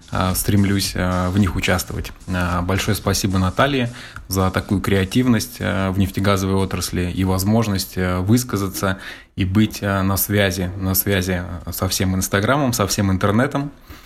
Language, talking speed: Russian, 115 wpm